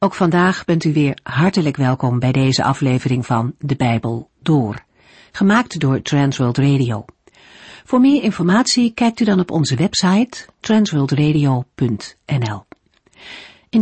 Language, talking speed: Dutch, 125 wpm